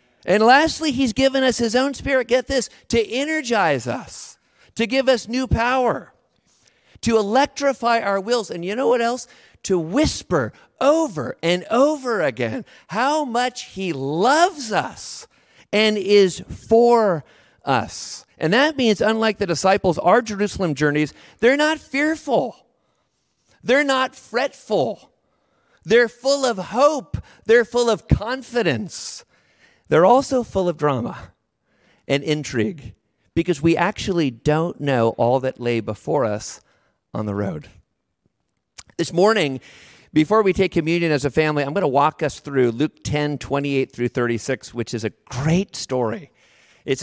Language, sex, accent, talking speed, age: English, male, American, 140 wpm, 40-59